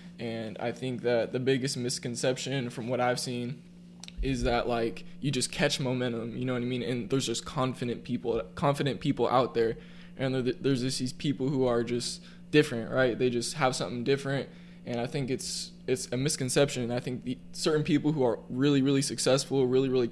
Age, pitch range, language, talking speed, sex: 20-39, 125-150 Hz, English, 195 wpm, male